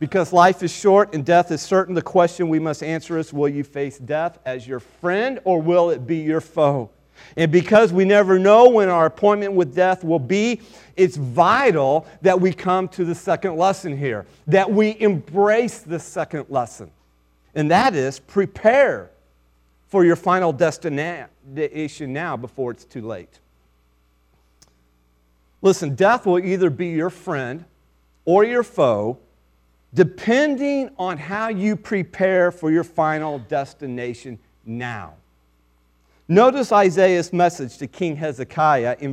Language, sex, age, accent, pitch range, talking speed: English, male, 40-59, American, 130-190 Hz, 145 wpm